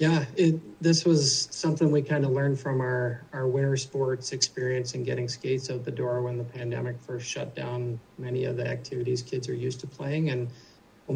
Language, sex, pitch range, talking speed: English, male, 125-140 Hz, 200 wpm